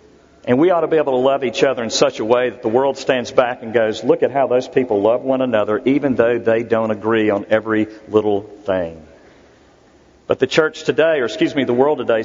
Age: 50-69